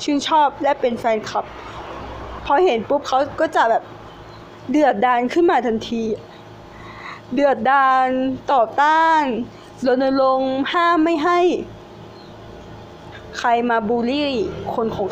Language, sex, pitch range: Thai, female, 230-320 Hz